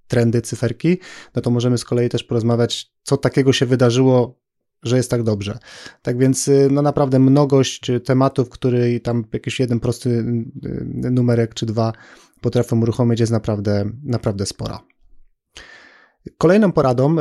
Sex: male